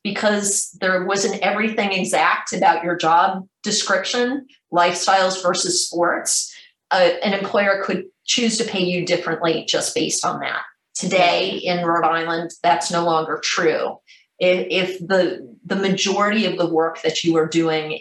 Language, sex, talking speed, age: English, female, 150 wpm, 40-59